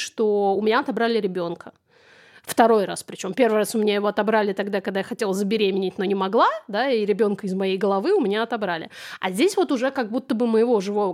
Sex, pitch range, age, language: female, 200-240 Hz, 30-49, Russian